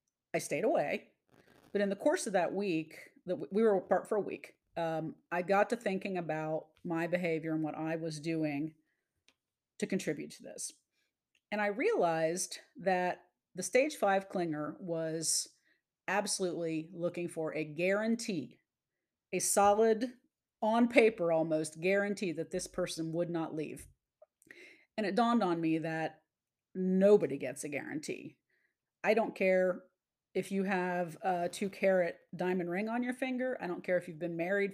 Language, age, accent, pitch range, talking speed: English, 40-59, American, 165-210 Hz, 155 wpm